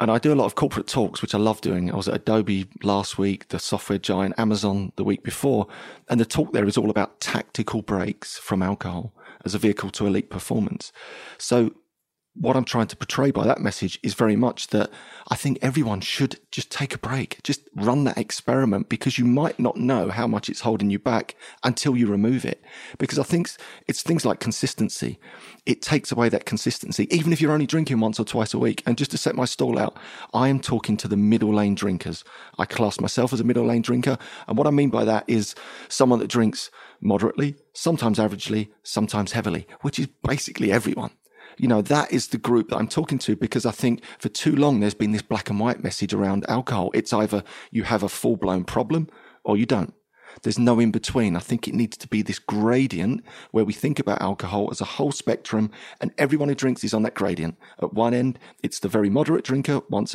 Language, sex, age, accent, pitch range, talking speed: English, male, 30-49, British, 105-130 Hz, 220 wpm